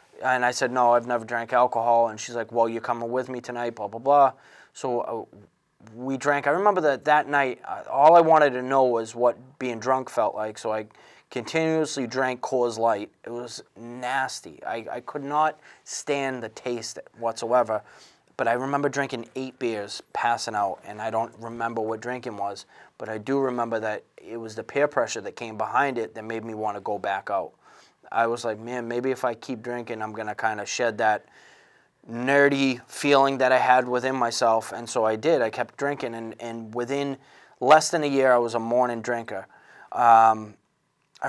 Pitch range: 115-135 Hz